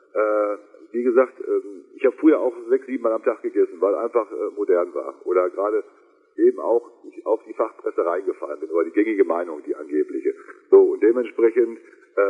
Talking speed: 170 wpm